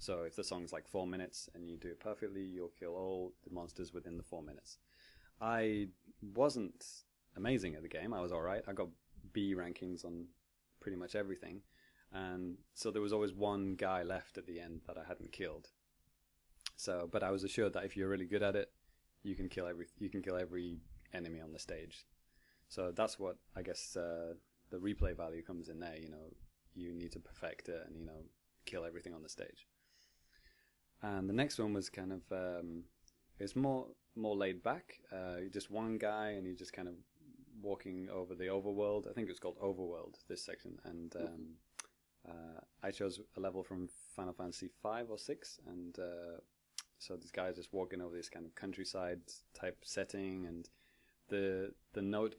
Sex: male